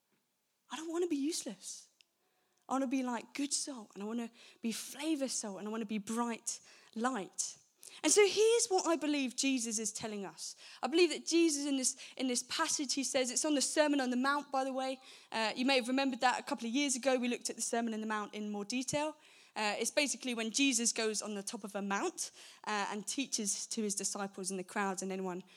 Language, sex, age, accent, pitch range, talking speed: English, female, 20-39, British, 225-315 Hz, 240 wpm